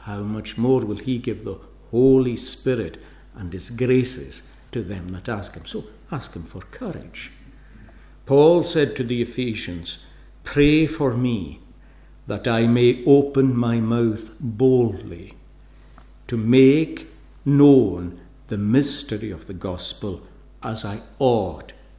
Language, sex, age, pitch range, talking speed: English, male, 60-79, 100-140 Hz, 130 wpm